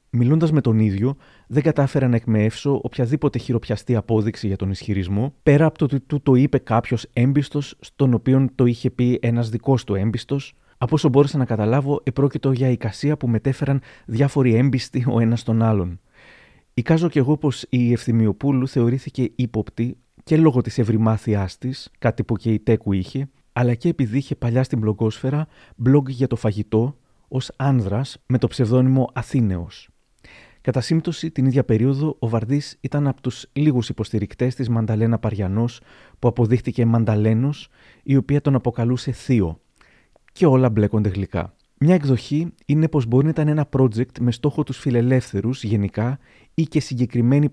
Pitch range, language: 115-140 Hz, Greek